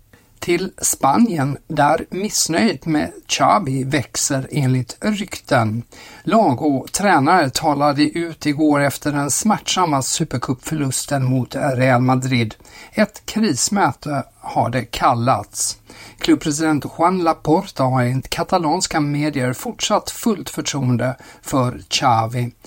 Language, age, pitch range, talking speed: Swedish, 60-79, 130-160 Hz, 100 wpm